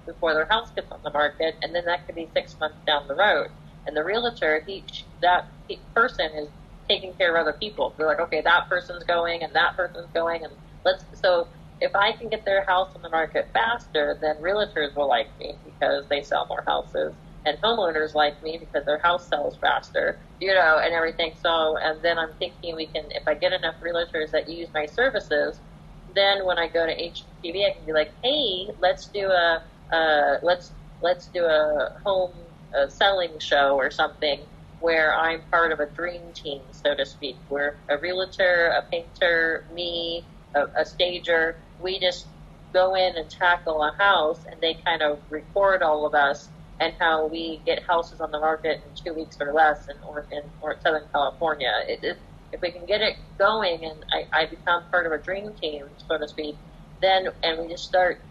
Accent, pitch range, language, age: American, 155-180 Hz, English, 30-49